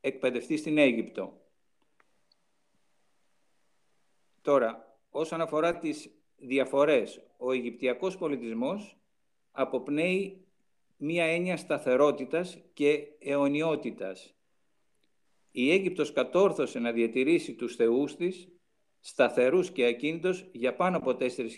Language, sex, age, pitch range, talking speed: Greek, male, 50-69, 125-180 Hz, 90 wpm